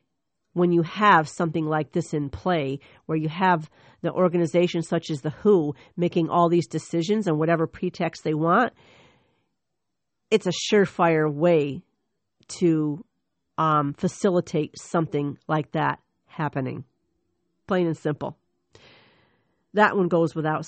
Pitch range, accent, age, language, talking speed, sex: 160-195 Hz, American, 50-69, English, 130 wpm, female